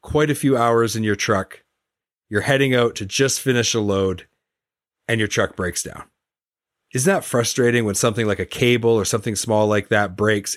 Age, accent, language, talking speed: 30-49, American, English, 195 wpm